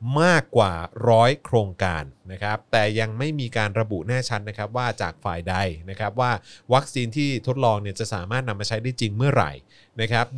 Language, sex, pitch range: Thai, male, 105-130 Hz